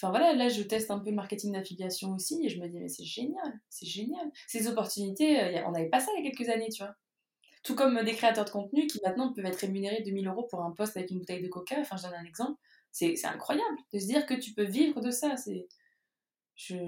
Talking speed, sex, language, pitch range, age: 260 wpm, female, French, 190-260 Hz, 20-39